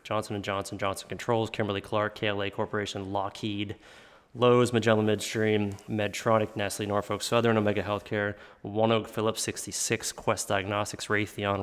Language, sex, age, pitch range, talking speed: English, male, 20-39, 100-110 Hz, 135 wpm